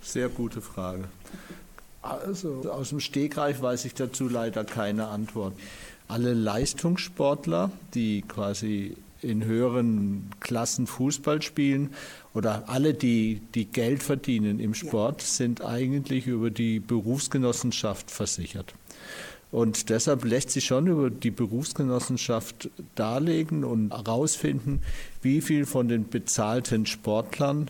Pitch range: 110-135 Hz